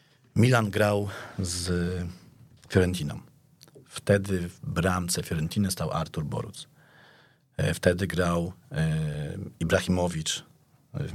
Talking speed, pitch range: 80 wpm, 90-140 Hz